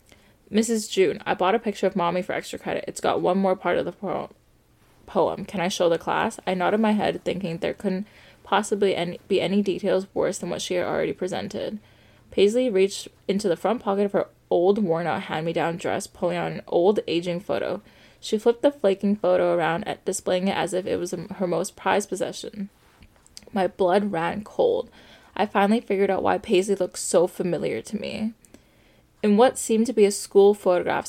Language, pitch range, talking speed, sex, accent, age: English, 175-210 Hz, 195 wpm, female, American, 20-39